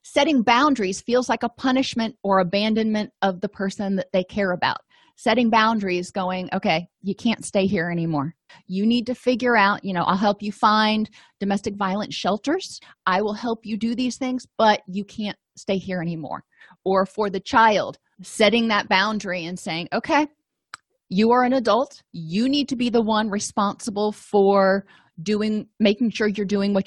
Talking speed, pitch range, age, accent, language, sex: 175 wpm, 195-235 Hz, 30-49, American, English, female